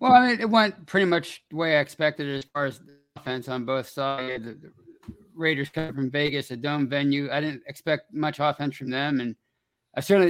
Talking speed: 215 wpm